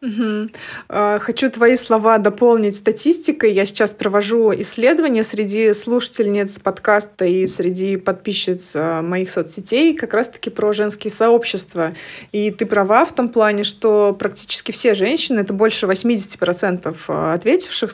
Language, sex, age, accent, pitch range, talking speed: Russian, female, 20-39, native, 195-235 Hz, 125 wpm